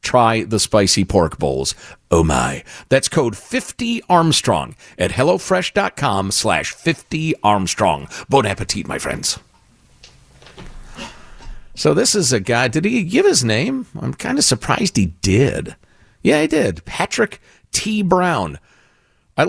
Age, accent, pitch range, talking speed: 50-69, American, 115-180 Hz, 130 wpm